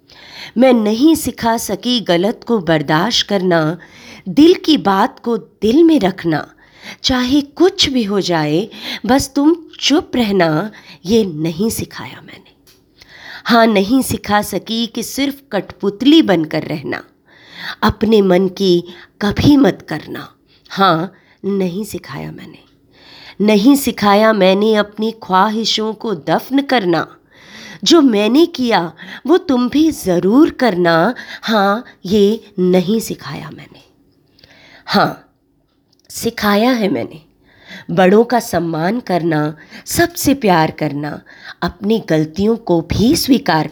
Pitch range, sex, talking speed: 180-240 Hz, female, 115 wpm